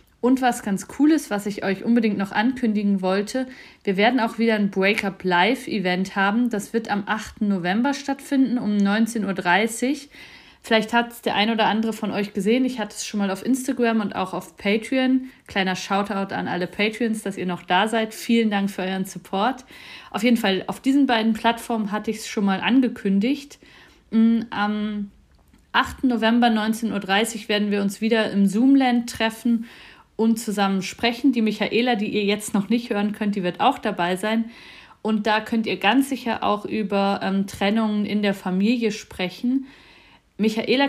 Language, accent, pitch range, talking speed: German, German, 200-230 Hz, 180 wpm